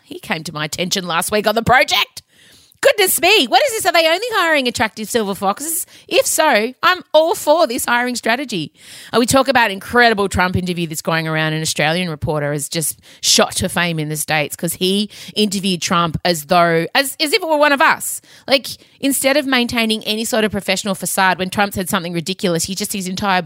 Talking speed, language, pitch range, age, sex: 210 wpm, English, 170-270 Hz, 30-49, female